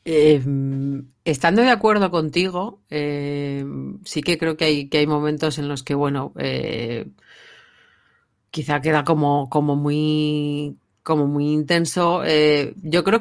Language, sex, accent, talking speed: Spanish, female, Spanish, 130 wpm